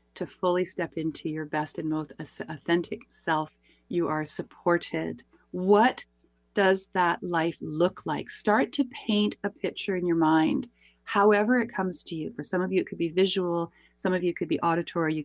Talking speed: 185 wpm